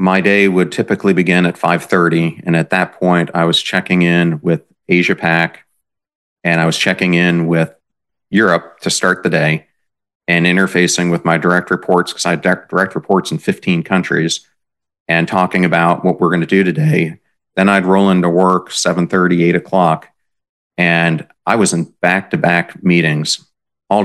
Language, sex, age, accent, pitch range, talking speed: English, male, 40-59, American, 85-95 Hz, 165 wpm